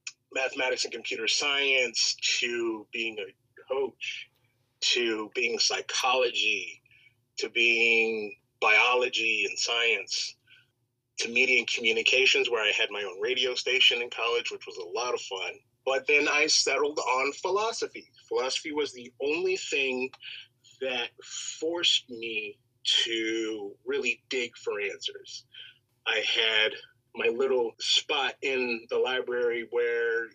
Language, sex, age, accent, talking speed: English, male, 30-49, American, 125 wpm